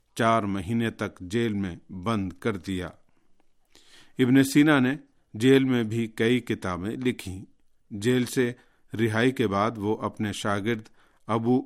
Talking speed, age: 135 wpm, 50-69